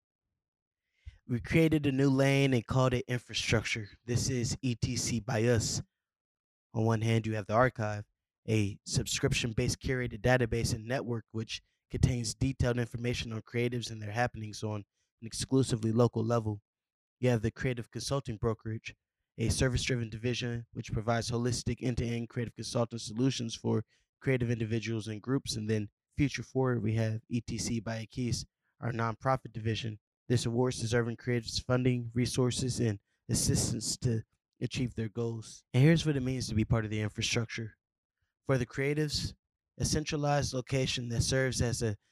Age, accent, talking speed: 20-39, American, 150 wpm